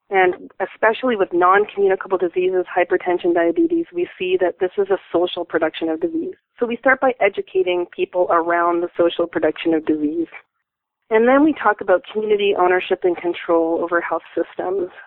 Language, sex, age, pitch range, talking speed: English, female, 30-49, 175-230 Hz, 165 wpm